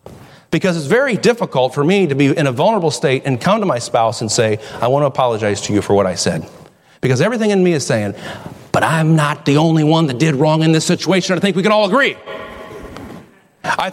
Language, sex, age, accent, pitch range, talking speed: English, male, 40-59, American, 140-220 Hz, 235 wpm